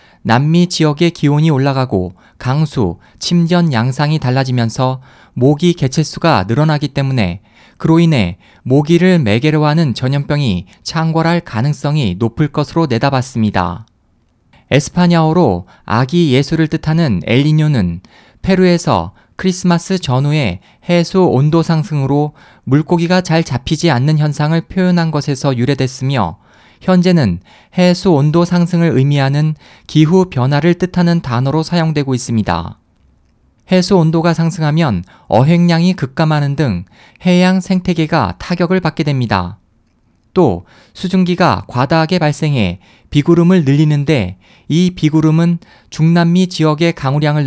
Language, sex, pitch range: Korean, male, 125-170 Hz